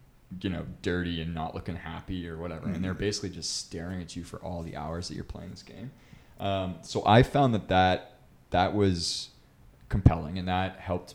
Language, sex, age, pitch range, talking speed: English, male, 20-39, 90-105 Hz, 200 wpm